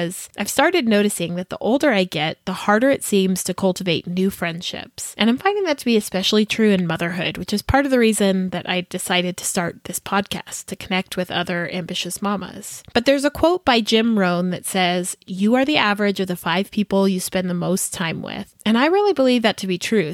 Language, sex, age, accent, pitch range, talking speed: English, female, 20-39, American, 185-230 Hz, 225 wpm